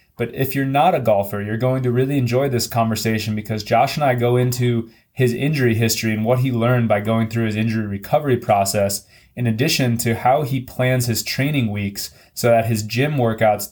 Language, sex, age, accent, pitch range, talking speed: English, male, 20-39, American, 110-130 Hz, 205 wpm